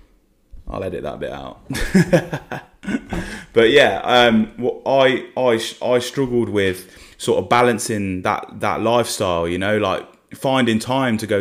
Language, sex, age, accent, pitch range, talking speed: English, male, 20-39, British, 95-120 Hz, 140 wpm